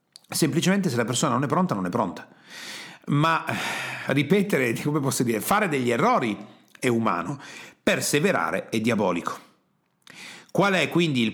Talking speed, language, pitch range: 145 wpm, Italian, 125-170 Hz